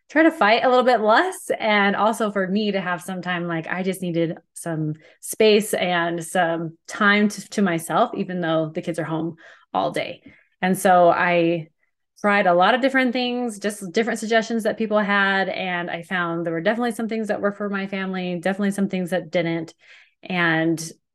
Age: 20-39